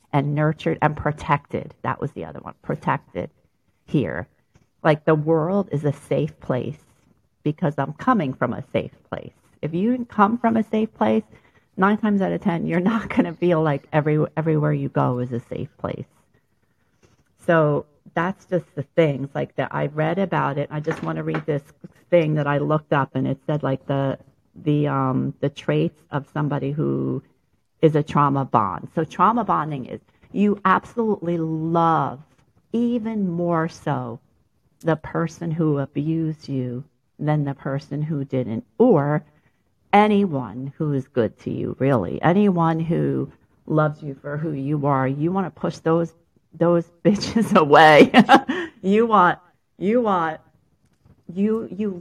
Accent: American